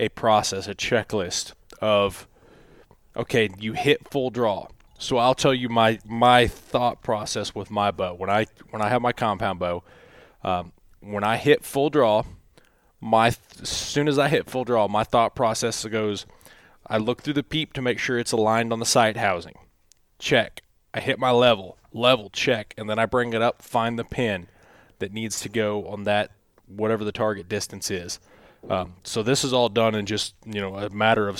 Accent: American